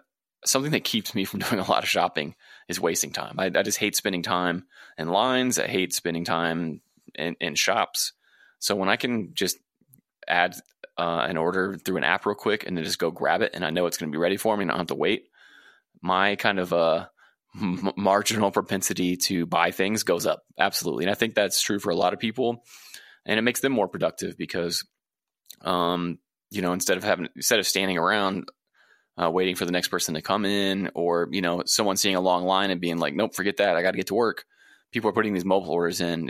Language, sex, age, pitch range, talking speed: English, male, 20-39, 85-105 Hz, 235 wpm